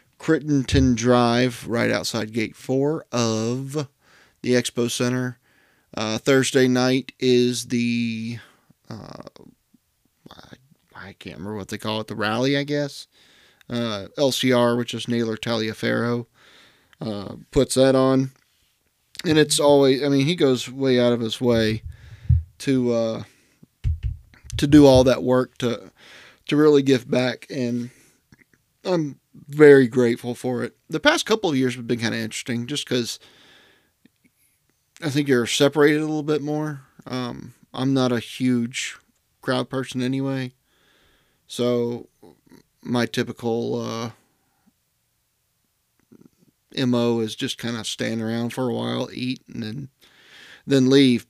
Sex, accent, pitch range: male, American, 115-135 Hz